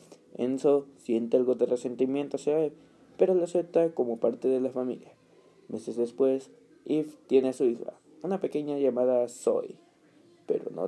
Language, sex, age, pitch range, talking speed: Spanish, male, 20-39, 125-155 Hz, 155 wpm